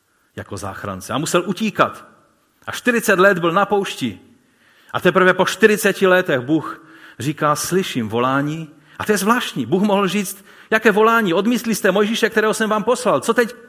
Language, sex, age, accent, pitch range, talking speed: Czech, male, 40-59, native, 120-190 Hz, 165 wpm